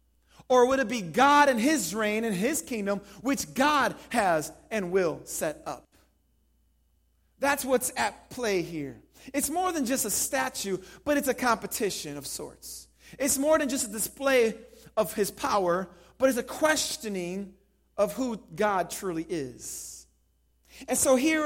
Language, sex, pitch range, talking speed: English, male, 180-255 Hz, 155 wpm